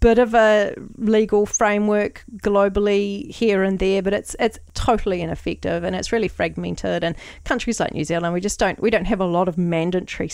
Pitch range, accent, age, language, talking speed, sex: 180-230 Hz, Australian, 40-59, English, 190 wpm, female